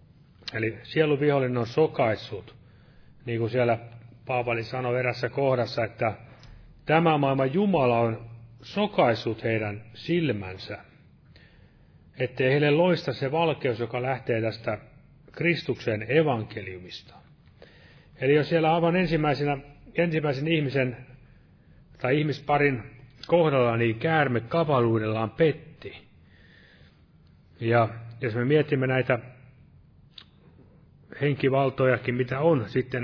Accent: native